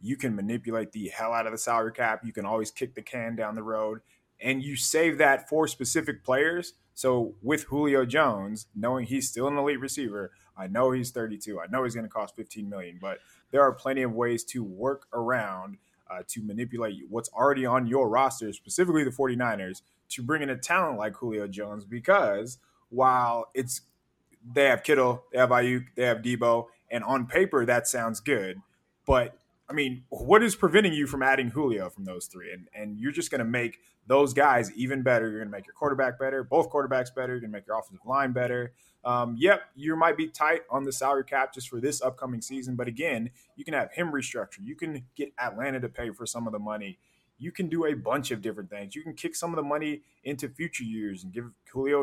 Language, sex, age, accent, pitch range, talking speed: English, male, 20-39, American, 115-140 Hz, 220 wpm